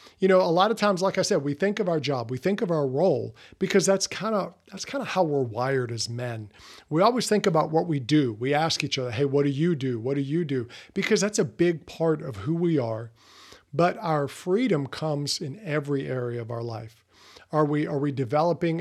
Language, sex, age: English, male, 50-69